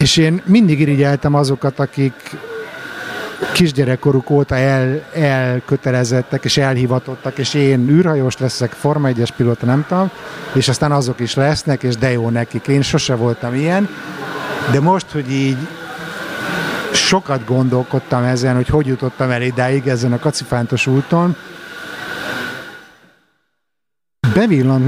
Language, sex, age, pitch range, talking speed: Hungarian, male, 50-69, 125-155 Hz, 120 wpm